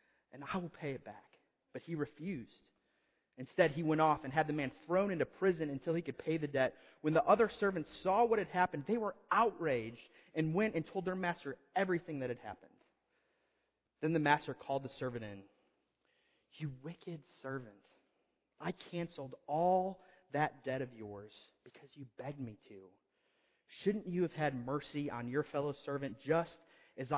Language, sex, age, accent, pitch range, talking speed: English, male, 30-49, American, 125-155 Hz, 175 wpm